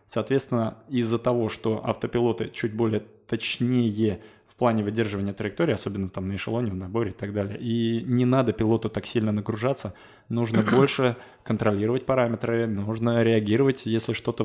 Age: 20-39